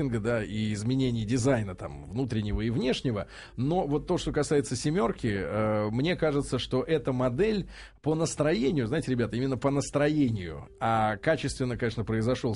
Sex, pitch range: male, 110-145 Hz